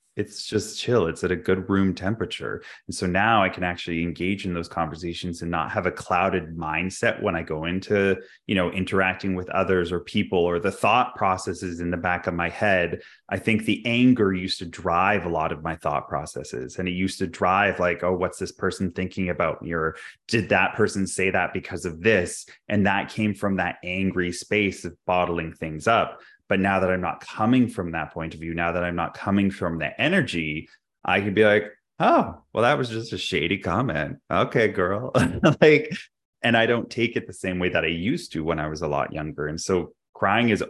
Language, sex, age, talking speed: English, male, 20-39, 215 wpm